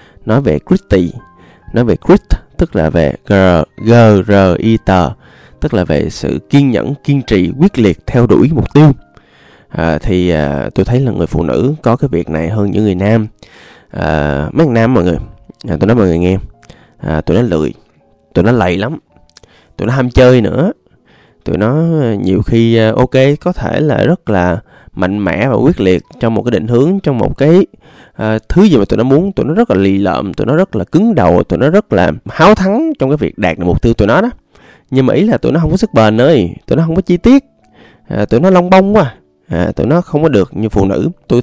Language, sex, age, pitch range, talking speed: Vietnamese, male, 20-39, 95-155 Hz, 225 wpm